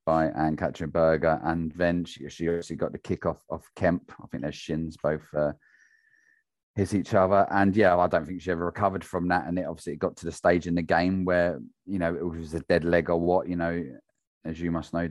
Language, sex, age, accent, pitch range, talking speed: English, male, 30-49, British, 80-95 Hz, 235 wpm